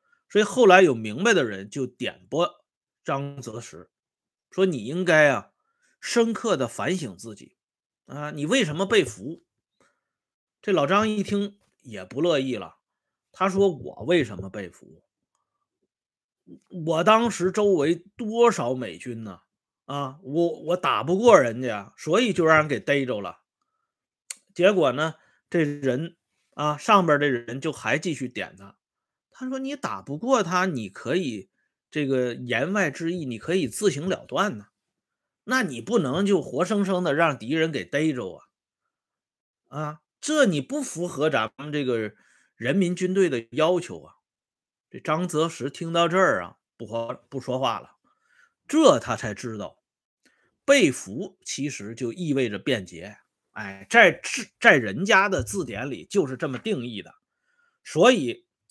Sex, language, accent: male, Swedish, Chinese